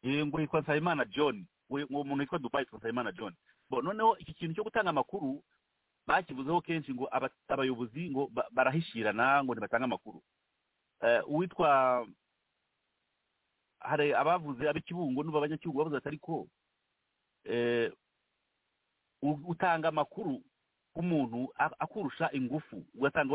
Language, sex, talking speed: English, male, 115 wpm